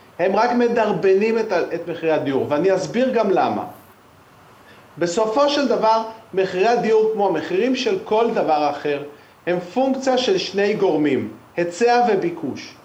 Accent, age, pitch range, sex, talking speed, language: native, 40-59, 195-275 Hz, male, 135 wpm, Hebrew